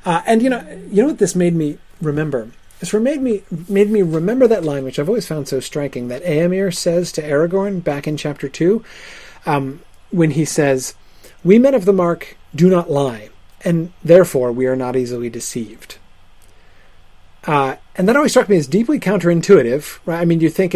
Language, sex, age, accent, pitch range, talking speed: English, male, 30-49, American, 130-185 Hz, 195 wpm